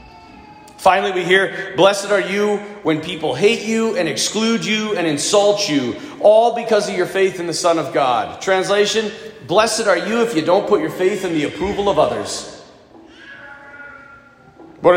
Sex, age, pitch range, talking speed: male, 40-59, 165-215 Hz, 170 wpm